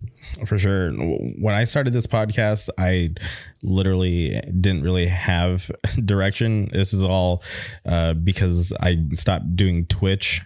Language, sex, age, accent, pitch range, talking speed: English, male, 20-39, American, 85-95 Hz, 125 wpm